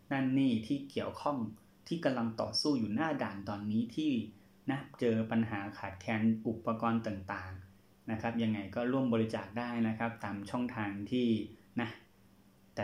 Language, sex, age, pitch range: Thai, male, 20-39, 100-115 Hz